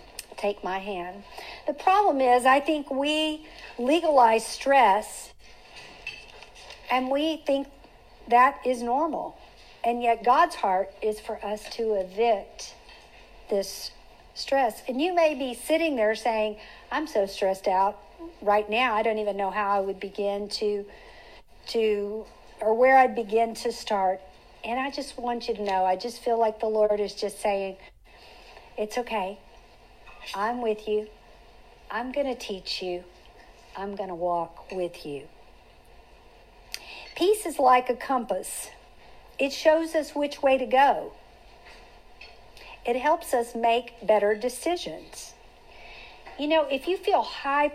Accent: American